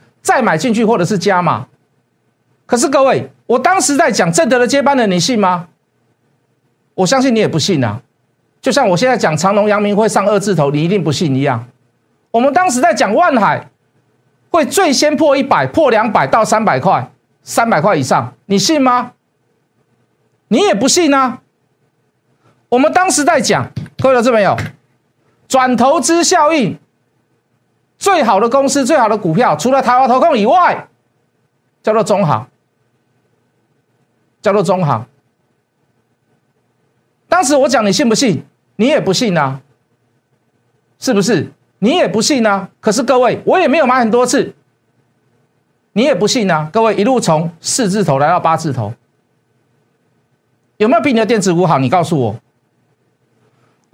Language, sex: Chinese, male